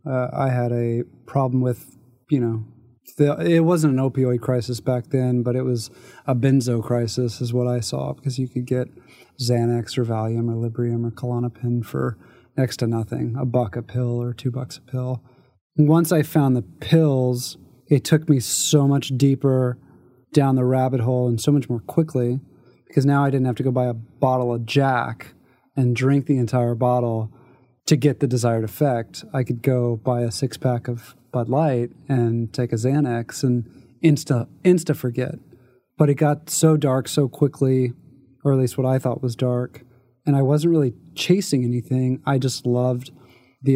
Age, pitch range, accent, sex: 20-39, 120-135 Hz, American, male